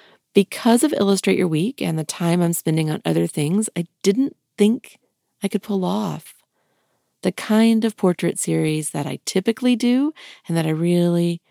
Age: 40-59